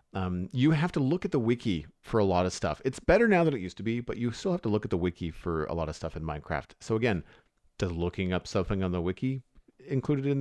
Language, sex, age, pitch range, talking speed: English, male, 40-59, 85-115 Hz, 275 wpm